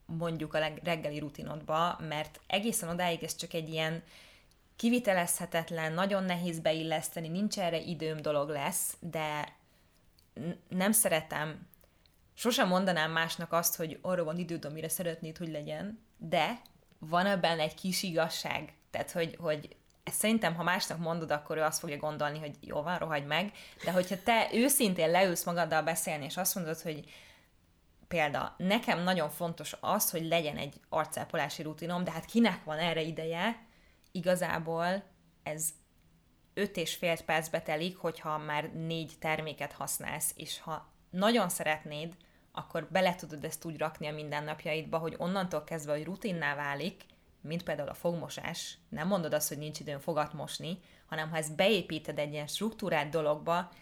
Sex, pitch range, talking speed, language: female, 155-180 Hz, 150 wpm, Hungarian